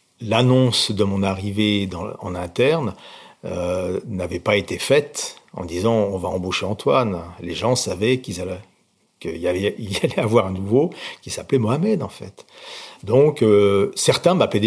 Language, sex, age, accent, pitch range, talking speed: French, male, 50-69, French, 100-135 Hz, 180 wpm